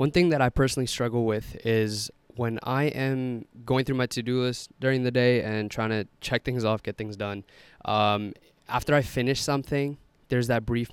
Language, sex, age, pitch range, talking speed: English, male, 20-39, 110-135 Hz, 200 wpm